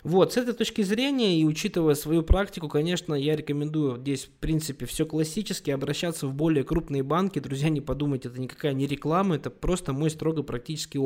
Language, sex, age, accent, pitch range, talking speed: Russian, male, 20-39, native, 135-165 Hz, 185 wpm